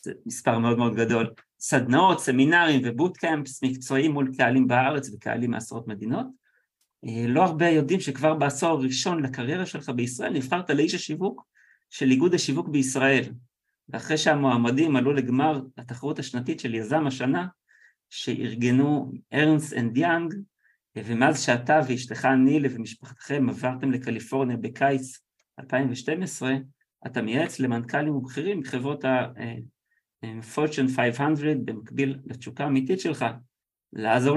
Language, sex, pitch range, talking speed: Hebrew, male, 125-155 Hz, 110 wpm